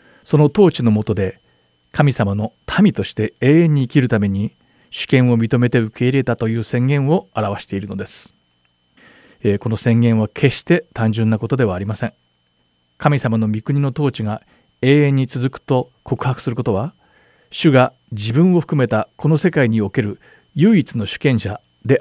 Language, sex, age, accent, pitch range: Japanese, male, 40-59, native, 100-135 Hz